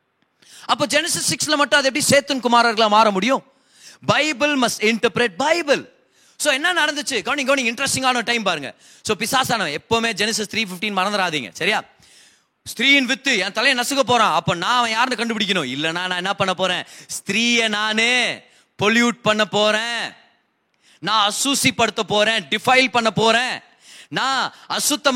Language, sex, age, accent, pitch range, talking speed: Tamil, male, 20-39, native, 195-260 Hz, 35 wpm